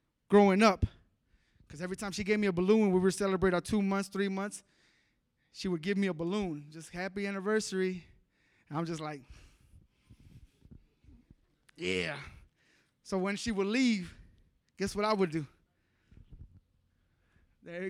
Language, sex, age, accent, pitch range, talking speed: English, male, 20-39, American, 160-205 Hz, 145 wpm